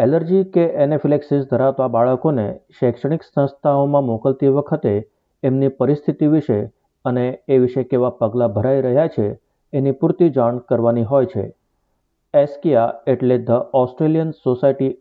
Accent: native